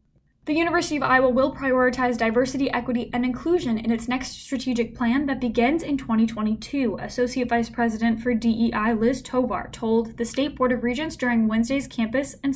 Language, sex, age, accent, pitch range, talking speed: English, female, 10-29, American, 230-275 Hz, 170 wpm